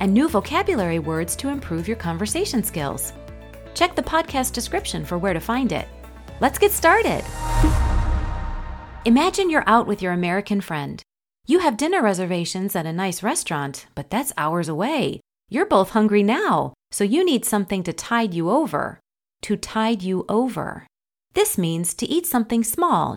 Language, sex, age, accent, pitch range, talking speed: English, female, 30-49, American, 175-270 Hz, 160 wpm